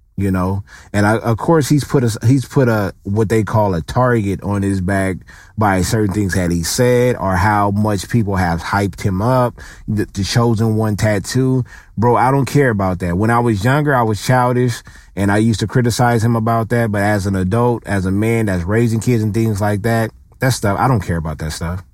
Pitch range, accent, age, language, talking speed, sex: 95-125 Hz, American, 30-49, English, 225 wpm, male